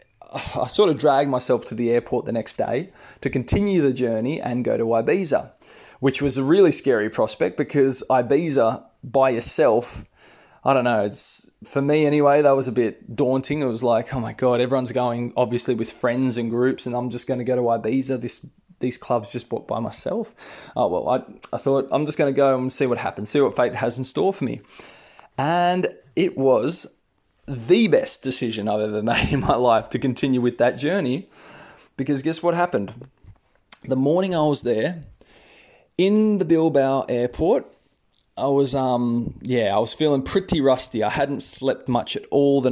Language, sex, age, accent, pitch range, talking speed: English, male, 20-39, Australian, 120-140 Hz, 190 wpm